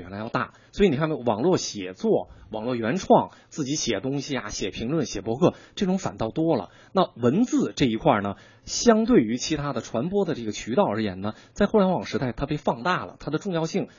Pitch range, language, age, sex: 110-180 Hz, Chinese, 20-39, male